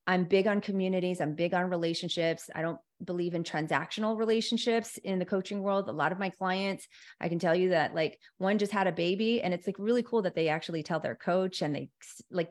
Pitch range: 165-195 Hz